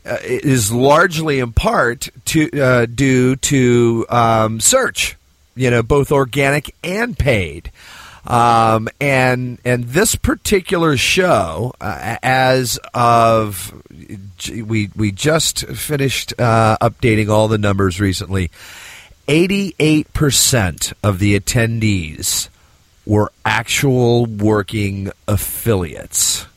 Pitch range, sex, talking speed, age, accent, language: 105-145 Hz, male, 105 wpm, 40-59, American, English